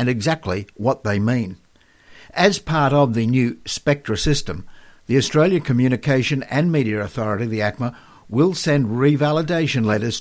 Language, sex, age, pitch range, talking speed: English, male, 60-79, 115-145 Hz, 140 wpm